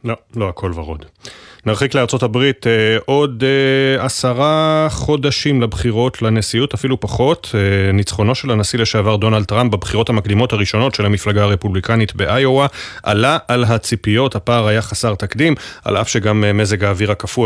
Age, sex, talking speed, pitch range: 30-49, male, 135 wpm, 105-130 Hz